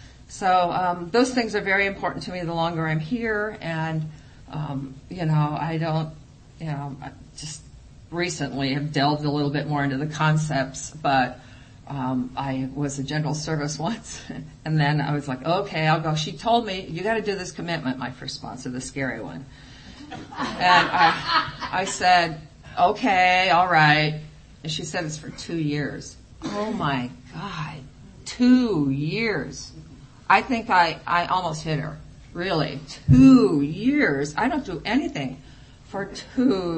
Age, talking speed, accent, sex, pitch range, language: 50-69, 160 wpm, American, female, 140-175 Hz, English